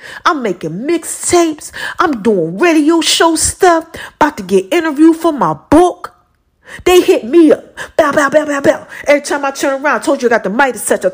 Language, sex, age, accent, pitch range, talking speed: English, female, 40-59, American, 200-295 Hz, 210 wpm